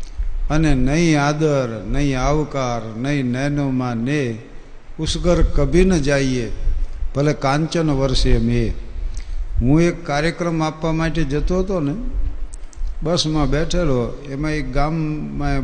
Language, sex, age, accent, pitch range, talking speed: Gujarati, male, 60-79, native, 105-150 Hz, 110 wpm